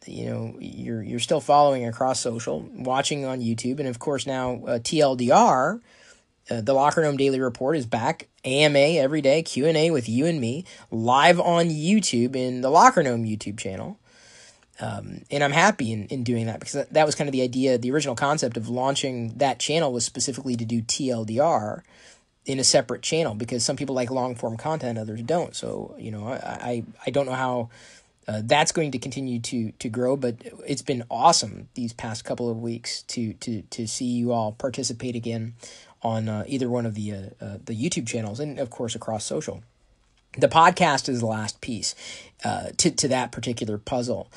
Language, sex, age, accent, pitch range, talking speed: English, male, 20-39, American, 115-140 Hz, 200 wpm